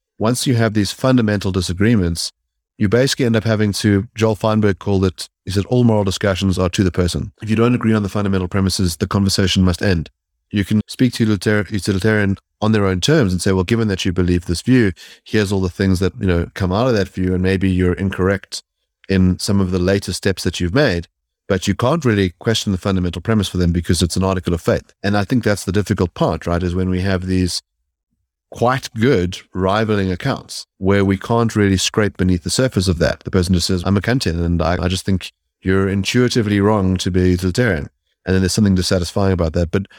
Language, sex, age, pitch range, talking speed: English, male, 30-49, 90-105 Hz, 225 wpm